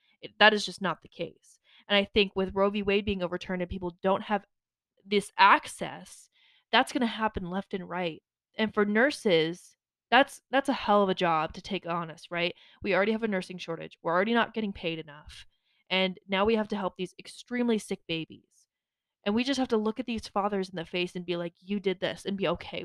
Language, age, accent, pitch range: English, 20-39, American, 185-230 Hz